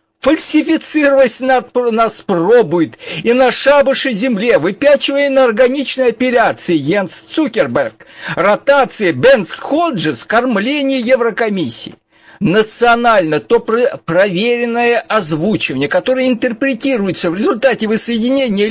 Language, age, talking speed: Russian, 50-69, 85 wpm